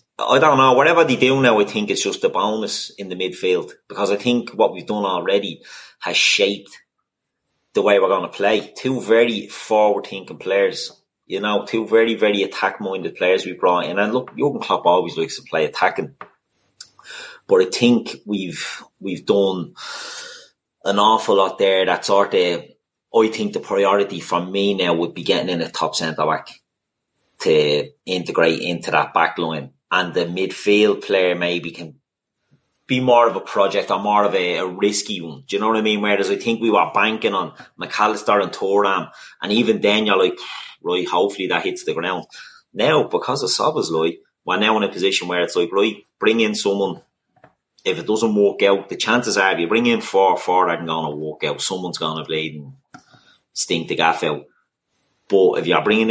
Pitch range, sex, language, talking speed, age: 90-150 Hz, male, English, 195 wpm, 30-49